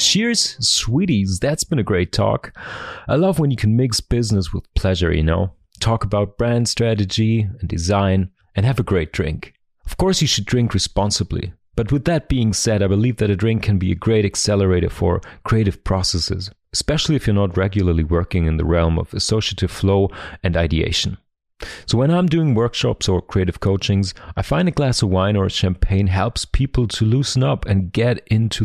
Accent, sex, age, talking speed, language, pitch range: German, male, 40-59, 190 wpm, English, 95-120 Hz